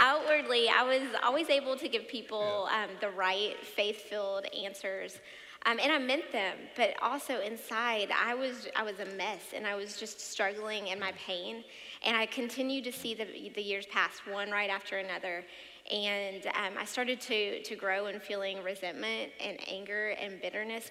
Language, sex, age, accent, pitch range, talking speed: English, female, 30-49, American, 200-245 Hz, 180 wpm